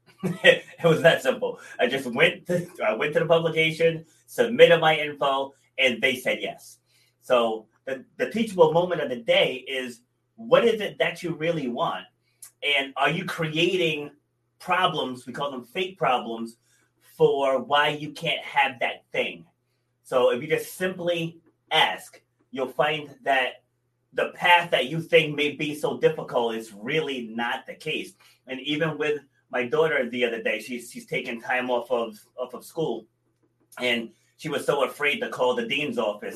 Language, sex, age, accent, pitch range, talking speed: English, male, 30-49, American, 125-170 Hz, 165 wpm